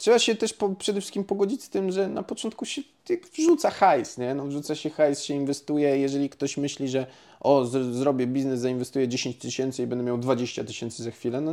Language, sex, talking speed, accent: Polish, male, 185 wpm, native